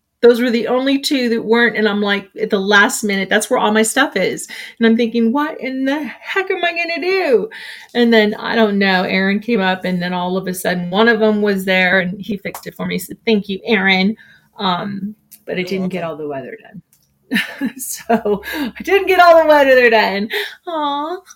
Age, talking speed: 30-49, 225 wpm